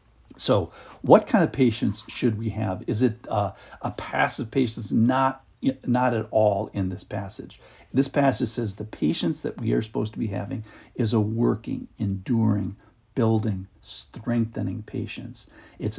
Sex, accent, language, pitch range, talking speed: male, American, English, 105-130 Hz, 155 wpm